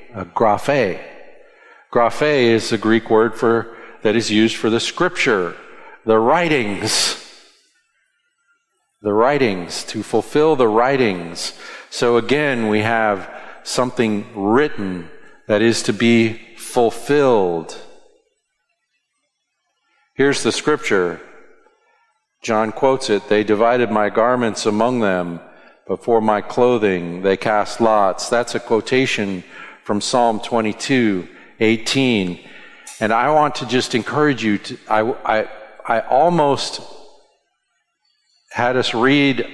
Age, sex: 50-69, male